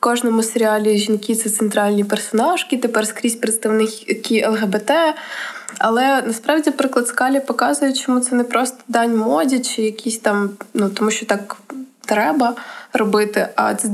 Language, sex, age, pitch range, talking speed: Ukrainian, female, 20-39, 225-260 Hz, 145 wpm